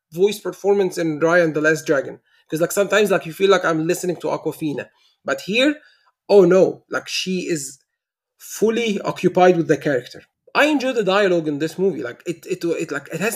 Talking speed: 200 wpm